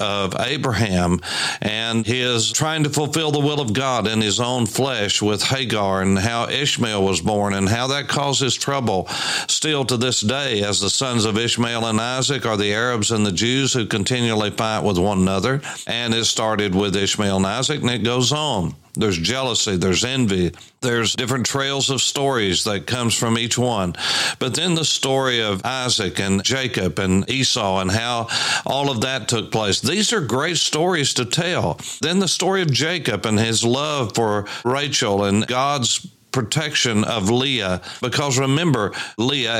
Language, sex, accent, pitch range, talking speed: English, male, American, 105-135 Hz, 175 wpm